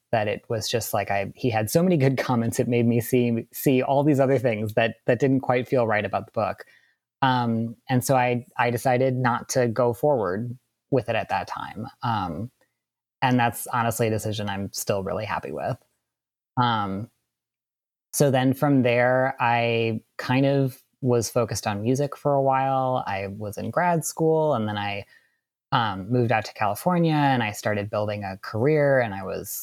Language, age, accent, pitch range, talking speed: English, 20-39, American, 115-135 Hz, 190 wpm